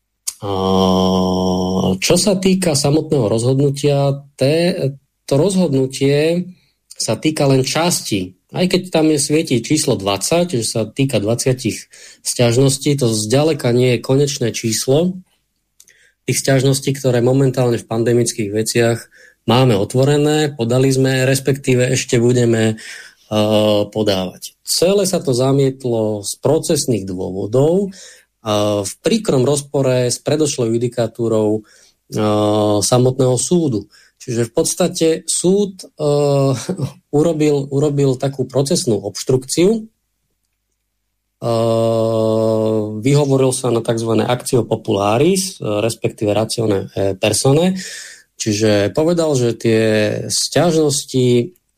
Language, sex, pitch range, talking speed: Slovak, male, 110-145 Hz, 100 wpm